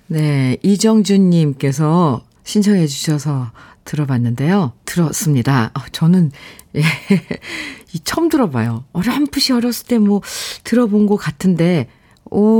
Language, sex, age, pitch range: Korean, female, 40-59, 150-225 Hz